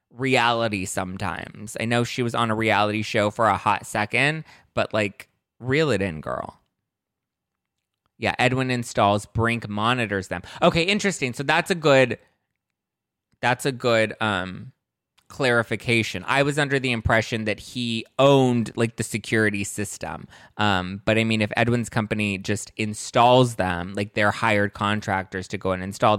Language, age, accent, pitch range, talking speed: English, 20-39, American, 100-125 Hz, 155 wpm